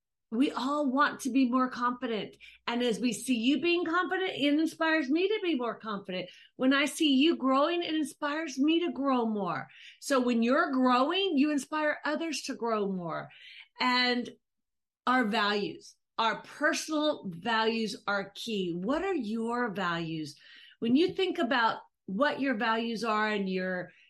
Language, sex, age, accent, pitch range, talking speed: English, female, 40-59, American, 205-285 Hz, 160 wpm